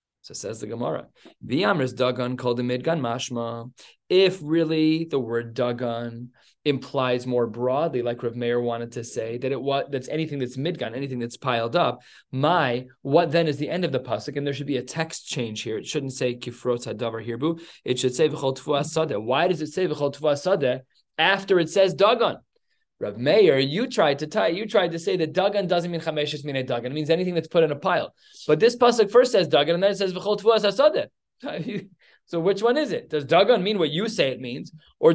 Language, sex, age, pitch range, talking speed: English, male, 20-39, 130-180 Hz, 200 wpm